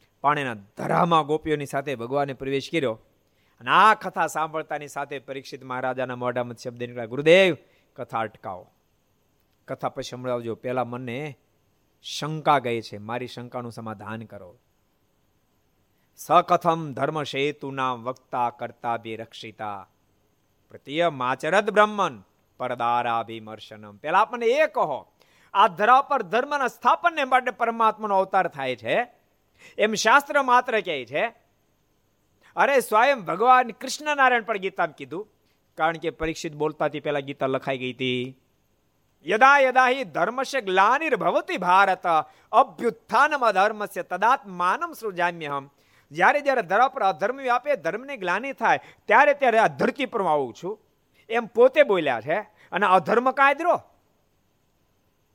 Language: Gujarati